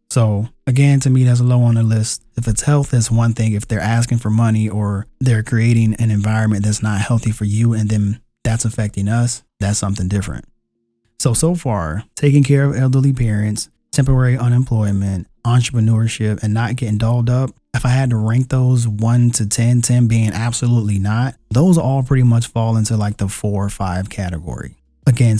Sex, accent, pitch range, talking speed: male, American, 105-125 Hz, 190 wpm